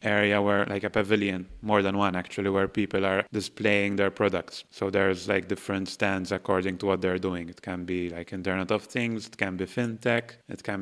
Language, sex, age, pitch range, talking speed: English, male, 30-49, 95-110 Hz, 210 wpm